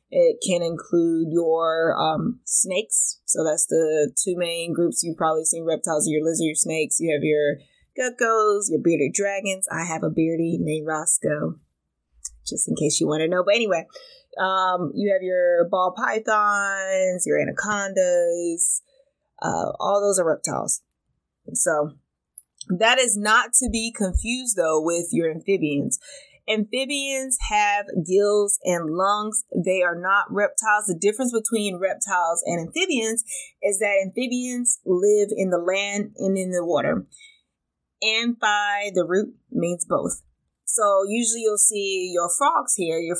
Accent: American